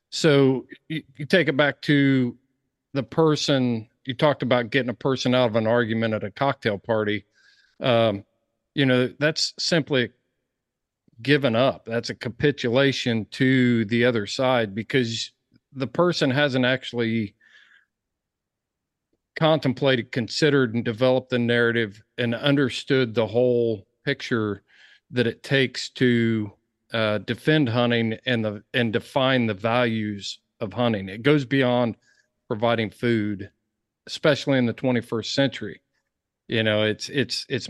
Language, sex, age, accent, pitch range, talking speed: English, male, 50-69, American, 115-135 Hz, 130 wpm